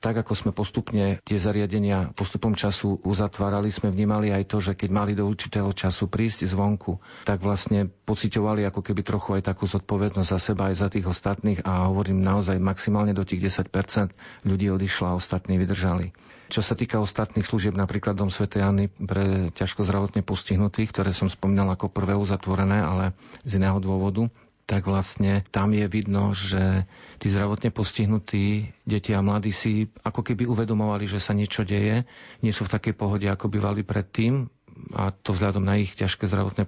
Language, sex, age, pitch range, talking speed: Slovak, male, 40-59, 95-105 Hz, 175 wpm